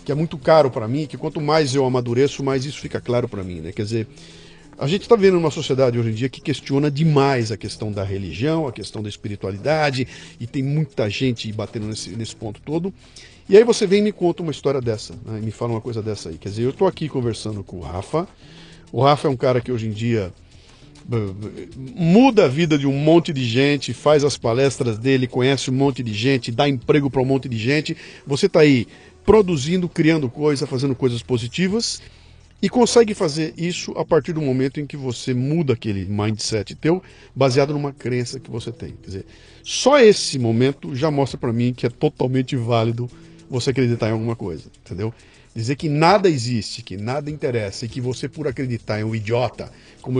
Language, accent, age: Portuguese, Brazilian, 50-69